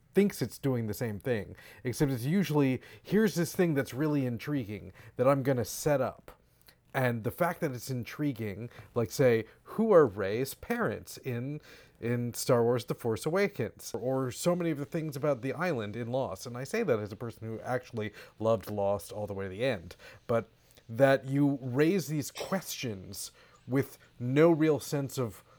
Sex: male